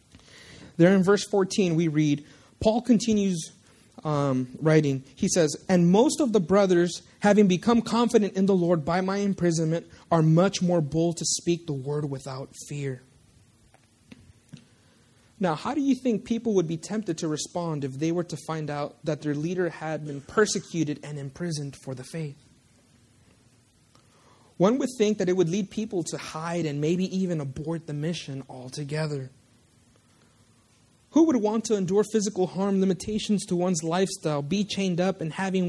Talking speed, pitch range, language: 165 wpm, 140-200 Hz, English